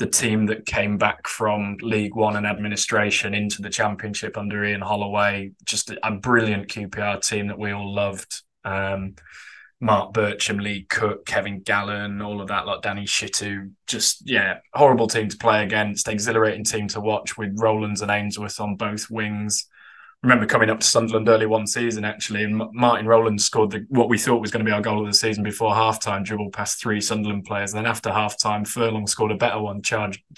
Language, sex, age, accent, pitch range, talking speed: English, male, 20-39, British, 105-115 Hz, 195 wpm